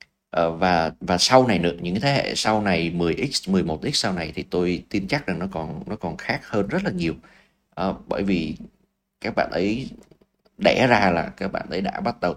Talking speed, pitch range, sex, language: 210 wpm, 90-115 Hz, male, Vietnamese